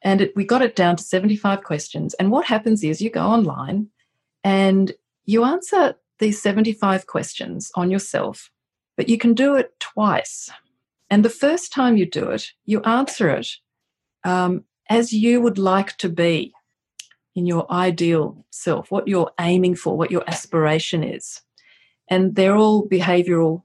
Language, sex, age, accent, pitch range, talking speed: English, female, 40-59, Australian, 165-210 Hz, 155 wpm